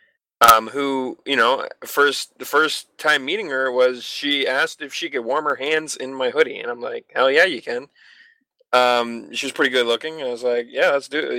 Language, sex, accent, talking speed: English, male, American, 220 wpm